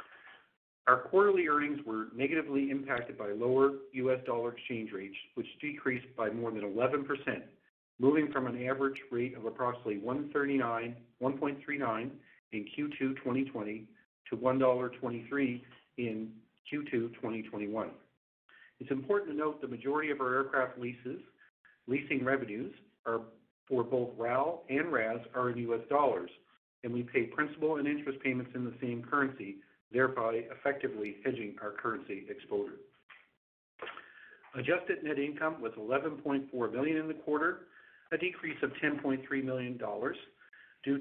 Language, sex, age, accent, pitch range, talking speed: English, male, 50-69, American, 120-140 Hz, 130 wpm